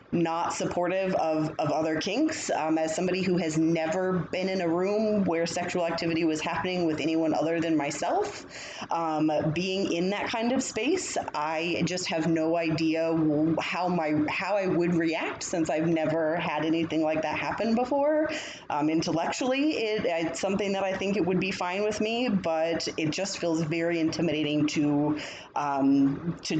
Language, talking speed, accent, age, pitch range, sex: English, 170 wpm, American, 20-39, 155-190 Hz, female